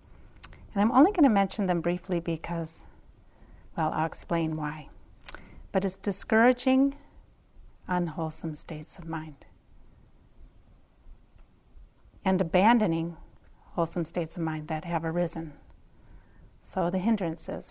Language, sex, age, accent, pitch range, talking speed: English, female, 40-59, American, 160-185 Hz, 110 wpm